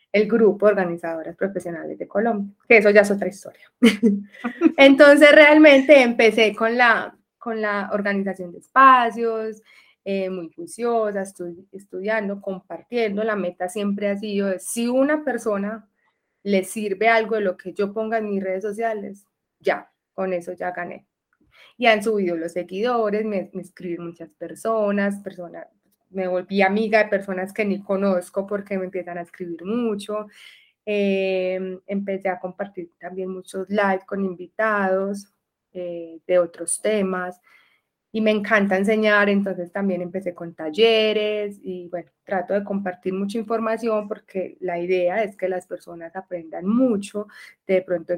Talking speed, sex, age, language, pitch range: 150 wpm, female, 20-39, Spanish, 180-215 Hz